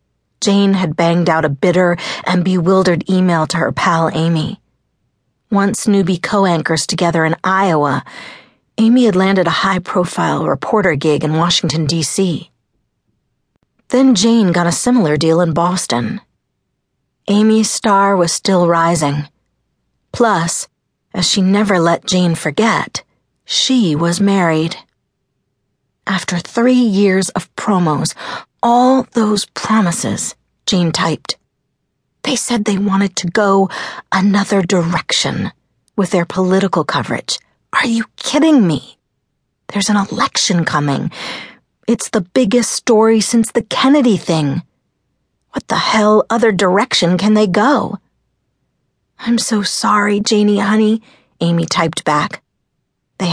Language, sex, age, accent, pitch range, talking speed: English, female, 40-59, American, 170-215 Hz, 120 wpm